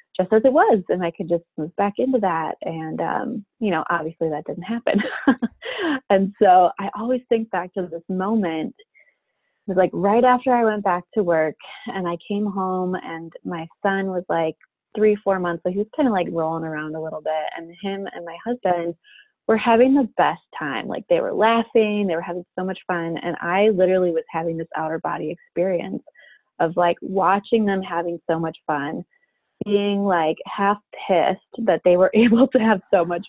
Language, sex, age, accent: English, female, 20-39, American